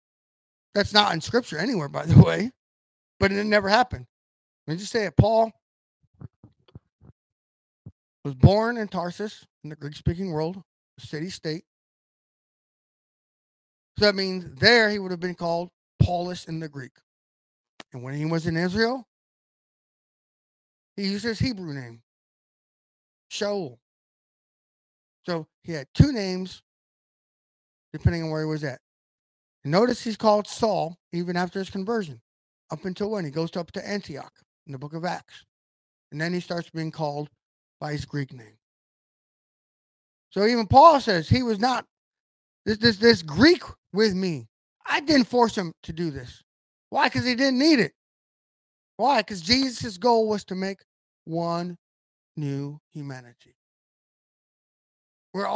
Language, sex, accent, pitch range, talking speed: English, male, American, 145-210 Hz, 145 wpm